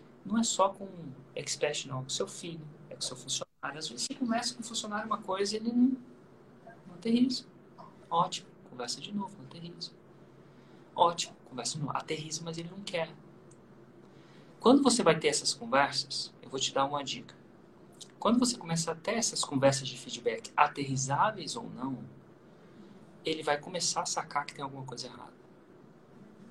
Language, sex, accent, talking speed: Portuguese, male, Brazilian, 180 wpm